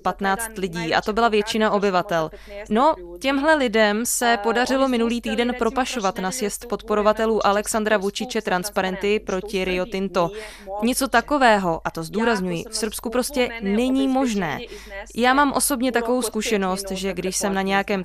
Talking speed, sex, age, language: 145 wpm, female, 20-39, Czech